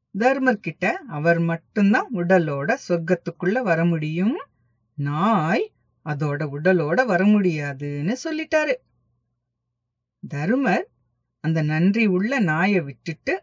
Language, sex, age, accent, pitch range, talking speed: English, female, 50-69, Indian, 150-240 Hz, 90 wpm